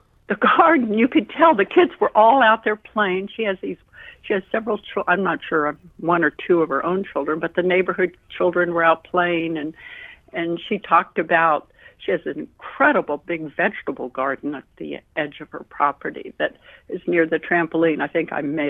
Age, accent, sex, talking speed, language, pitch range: 60-79, American, female, 200 wpm, English, 160-205 Hz